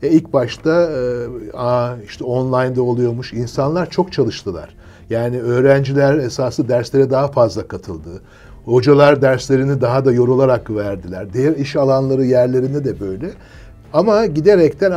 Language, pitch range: Turkish, 120-150 Hz